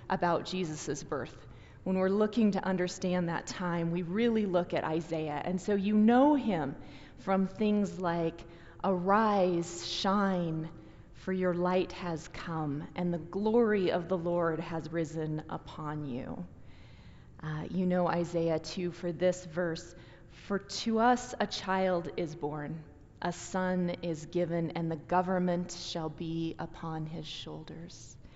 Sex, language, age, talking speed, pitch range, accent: female, English, 30-49, 140 wpm, 155-190 Hz, American